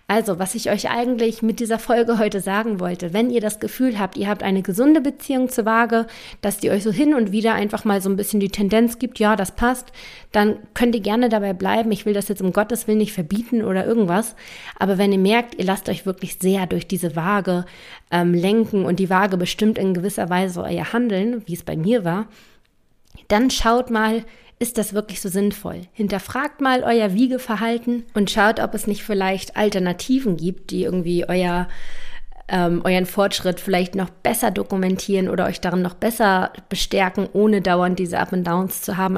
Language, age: German, 30-49